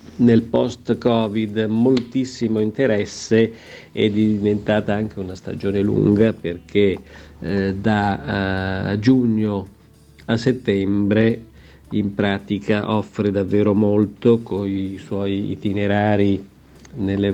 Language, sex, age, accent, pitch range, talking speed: Italian, male, 50-69, native, 100-115 Hz, 100 wpm